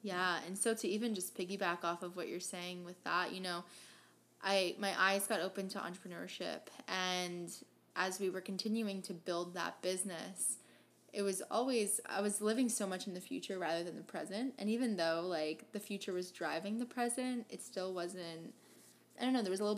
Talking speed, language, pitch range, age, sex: 205 wpm, English, 180-210 Hz, 10-29, female